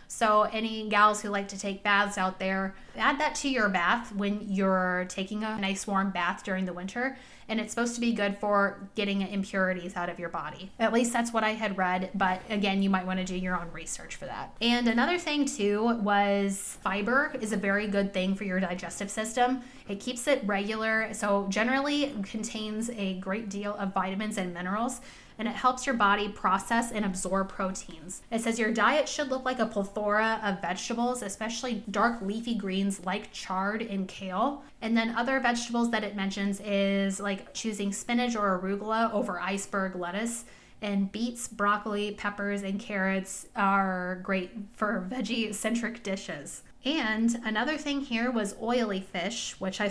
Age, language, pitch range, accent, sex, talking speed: 20-39, English, 195-230 Hz, American, female, 180 wpm